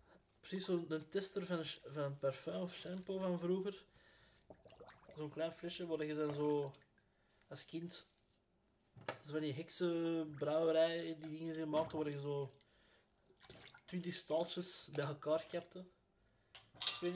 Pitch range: 145-175 Hz